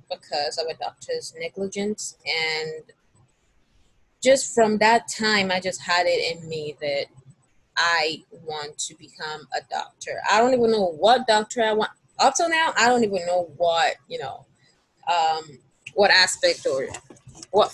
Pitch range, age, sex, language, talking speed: 170-240 Hz, 20-39, female, English, 155 wpm